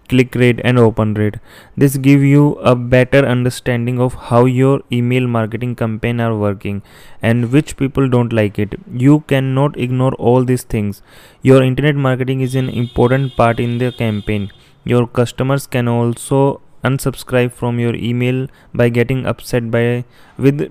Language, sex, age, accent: English, male, 20-39, Indian